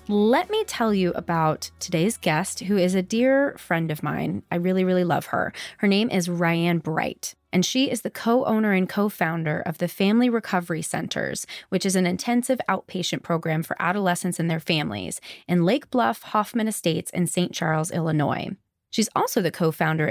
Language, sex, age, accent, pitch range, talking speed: English, female, 20-39, American, 170-220 Hz, 180 wpm